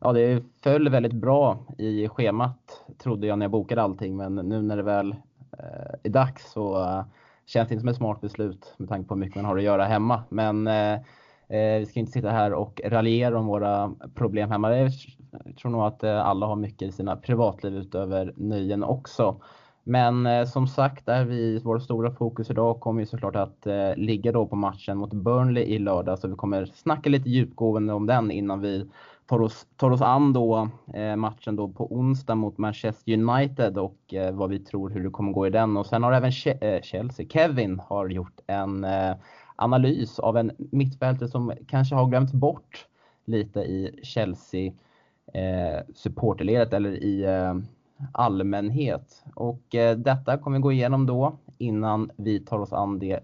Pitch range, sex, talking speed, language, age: 100-125 Hz, male, 190 wpm, Swedish, 20-39